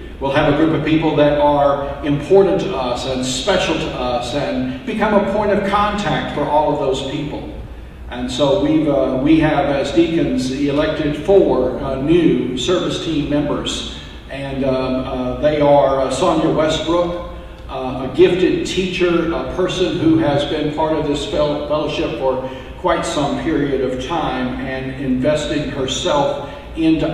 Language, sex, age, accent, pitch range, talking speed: English, male, 50-69, American, 135-160 Hz, 160 wpm